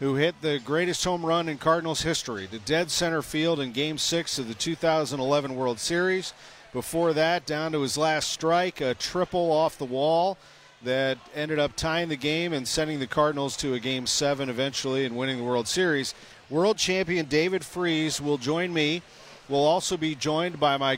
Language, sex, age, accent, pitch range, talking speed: English, male, 40-59, American, 140-170 Hz, 190 wpm